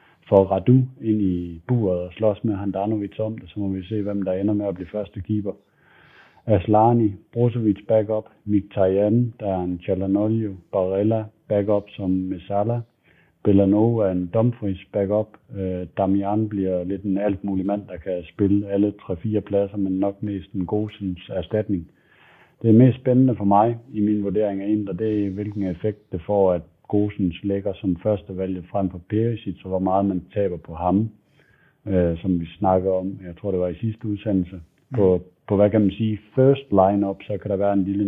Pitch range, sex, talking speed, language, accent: 95-105 Hz, male, 185 wpm, Danish, native